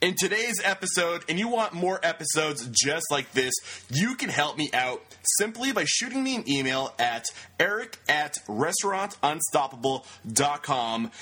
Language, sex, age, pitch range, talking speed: English, male, 20-39, 125-180 Hz, 140 wpm